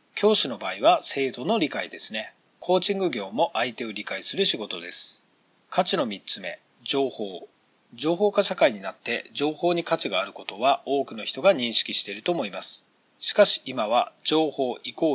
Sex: male